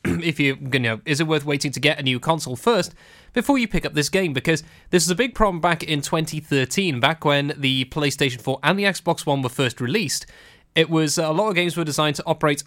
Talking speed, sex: 245 wpm, male